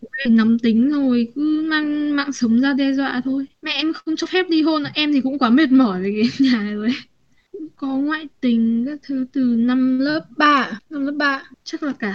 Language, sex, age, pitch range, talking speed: Vietnamese, female, 10-29, 235-275 Hz, 220 wpm